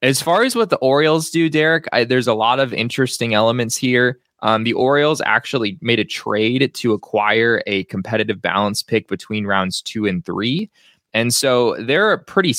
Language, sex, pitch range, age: English, male, 100-120 Hz, 20-39